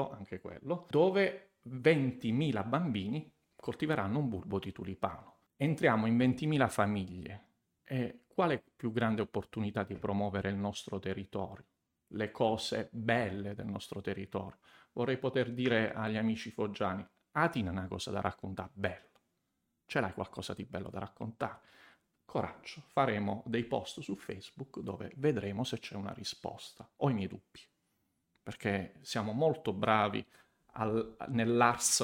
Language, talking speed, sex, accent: Italian, 135 wpm, male, native